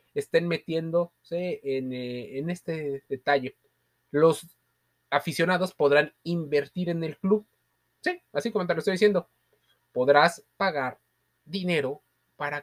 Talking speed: 115 wpm